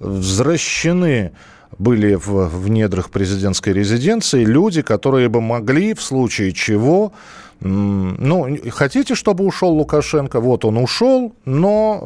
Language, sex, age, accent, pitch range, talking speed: Russian, male, 40-59, native, 110-150 Hz, 115 wpm